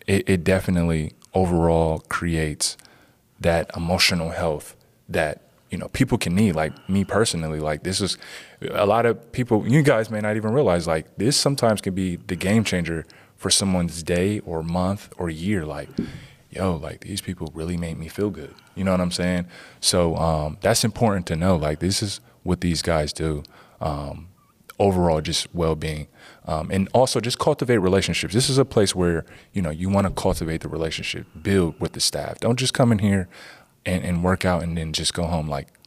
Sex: male